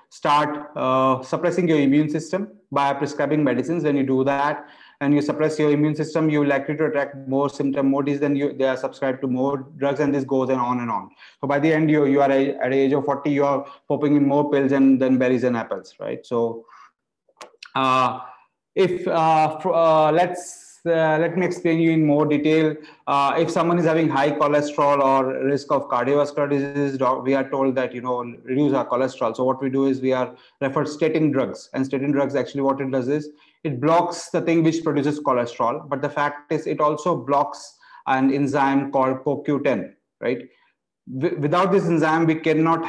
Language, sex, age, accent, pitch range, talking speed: English, male, 30-49, Indian, 135-155 Hz, 205 wpm